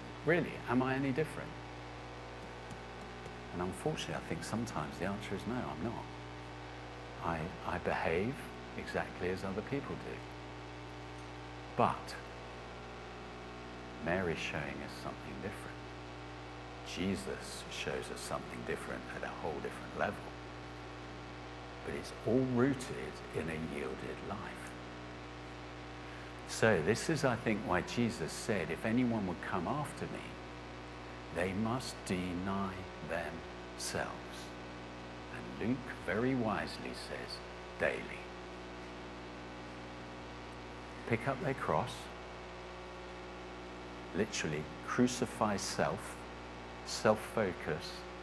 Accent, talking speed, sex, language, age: British, 100 wpm, male, English, 60-79